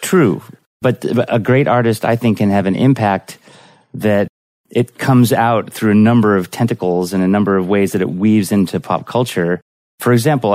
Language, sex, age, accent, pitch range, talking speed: English, male, 30-49, American, 95-120 Hz, 190 wpm